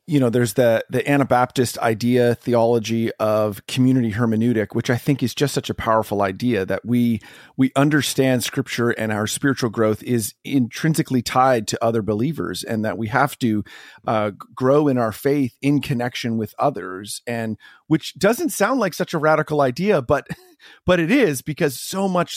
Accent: American